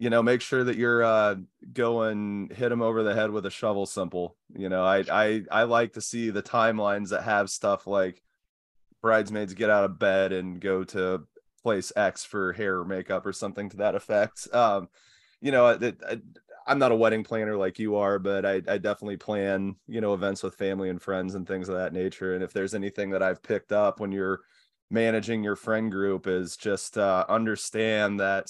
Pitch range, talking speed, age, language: 95-110 Hz, 210 wpm, 20-39, English